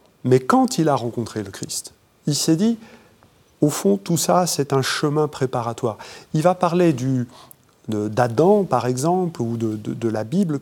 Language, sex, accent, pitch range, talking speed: French, male, French, 120-160 Hz, 180 wpm